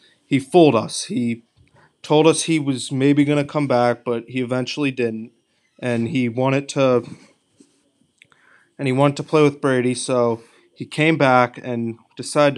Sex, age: male, 20-39